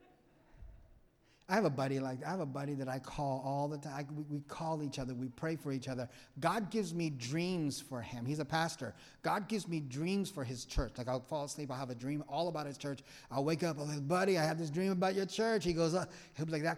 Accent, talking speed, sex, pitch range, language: American, 270 wpm, male, 130-170 Hz, English